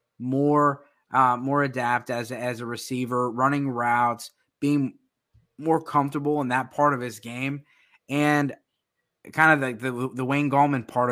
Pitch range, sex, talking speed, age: 125-145 Hz, male, 160 wpm, 20-39